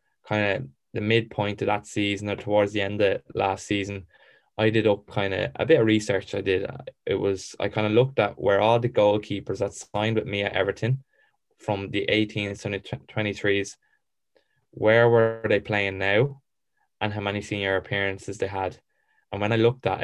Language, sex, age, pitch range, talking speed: English, male, 10-29, 100-110 Hz, 190 wpm